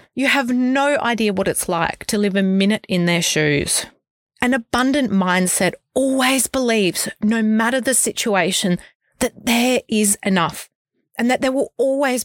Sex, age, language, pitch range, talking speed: female, 30-49, English, 185-255 Hz, 155 wpm